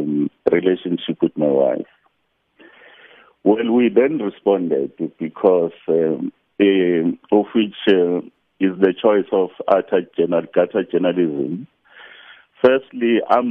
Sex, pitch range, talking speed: male, 90-110 Hz, 95 wpm